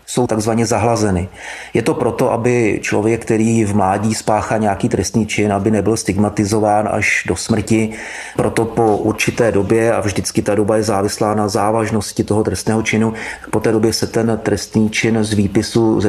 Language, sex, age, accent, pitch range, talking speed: Czech, male, 30-49, native, 105-120 Hz, 170 wpm